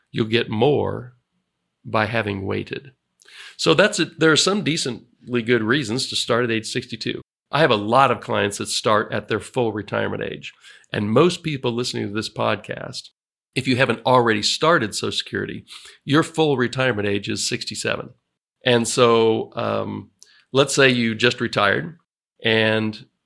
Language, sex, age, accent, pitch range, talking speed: English, male, 40-59, American, 110-145 Hz, 160 wpm